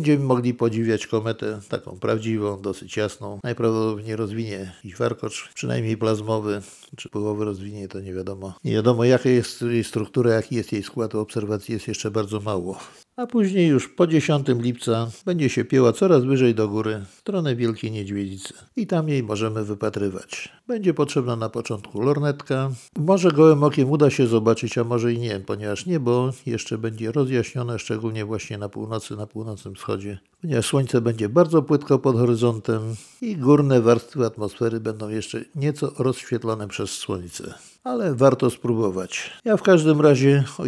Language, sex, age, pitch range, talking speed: Polish, male, 50-69, 105-135 Hz, 160 wpm